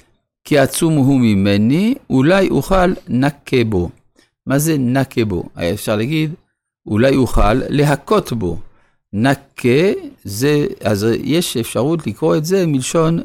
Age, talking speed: 50-69, 120 wpm